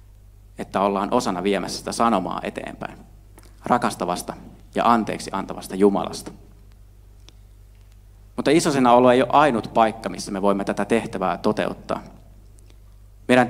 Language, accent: Finnish, native